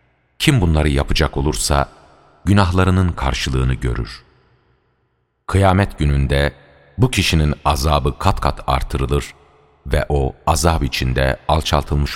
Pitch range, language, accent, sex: 65-90 Hz, Turkish, native, male